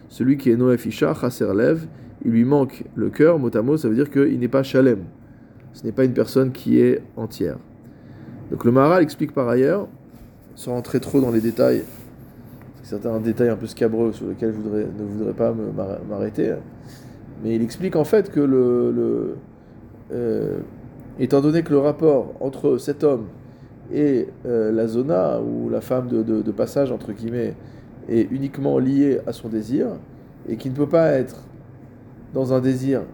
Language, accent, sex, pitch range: French, French, male, 115-135 Hz